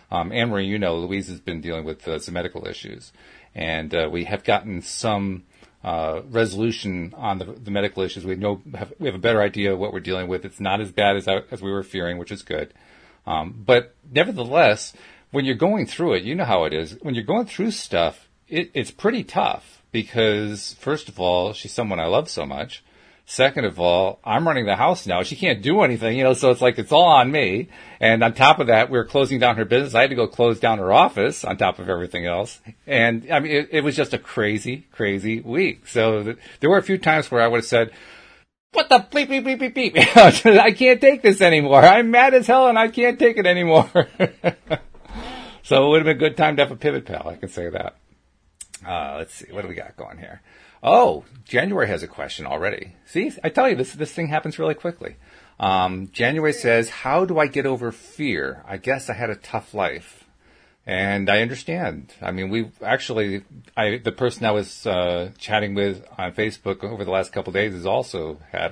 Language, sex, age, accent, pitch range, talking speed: English, male, 40-59, American, 95-140 Hz, 225 wpm